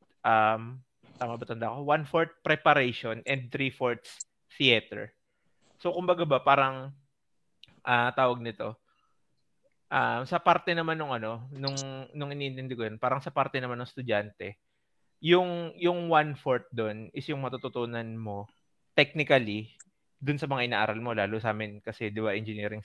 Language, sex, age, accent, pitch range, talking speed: Filipino, male, 20-39, native, 115-145 Hz, 135 wpm